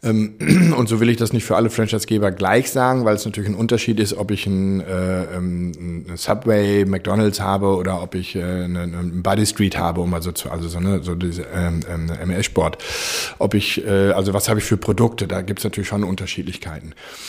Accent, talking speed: German, 190 wpm